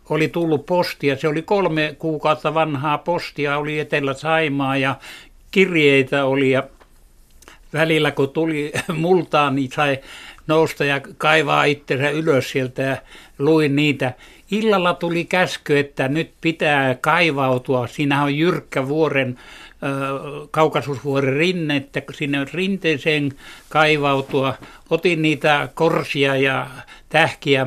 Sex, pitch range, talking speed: male, 135-160 Hz, 110 wpm